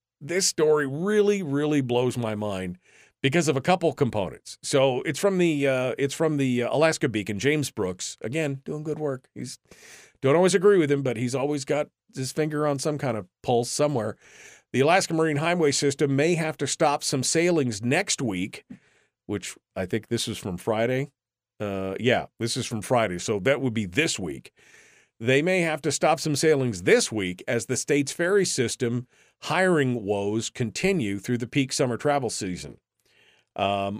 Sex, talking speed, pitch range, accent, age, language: male, 180 wpm, 110-145 Hz, American, 50-69, English